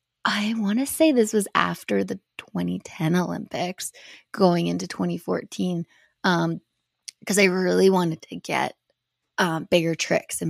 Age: 20-39